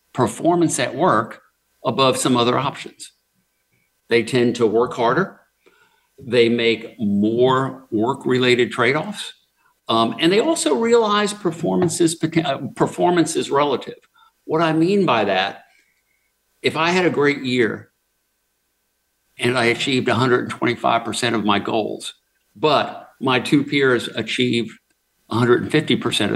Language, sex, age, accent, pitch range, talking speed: English, male, 50-69, American, 110-155 Hz, 110 wpm